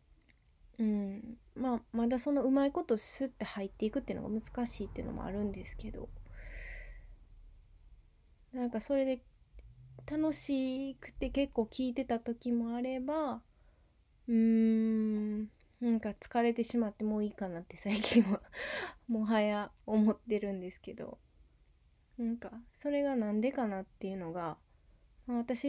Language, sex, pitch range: Japanese, female, 205-260 Hz